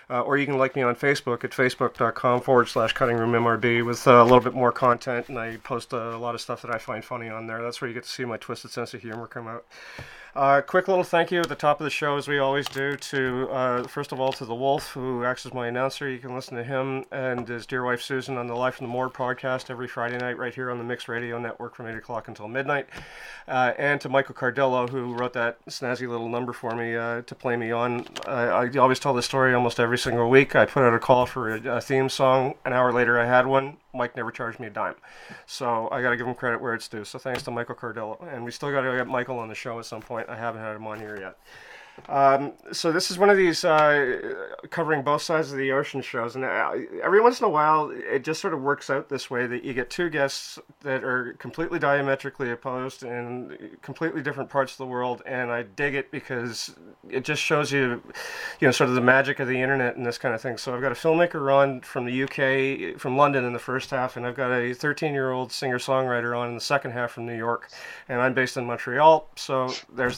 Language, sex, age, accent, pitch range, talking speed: English, male, 30-49, American, 120-135 Hz, 255 wpm